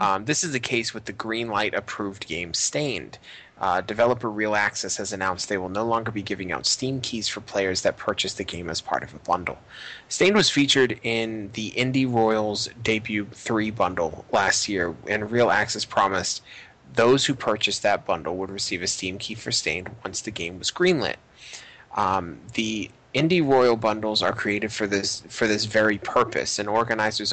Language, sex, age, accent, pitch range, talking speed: English, male, 20-39, American, 100-120 Hz, 185 wpm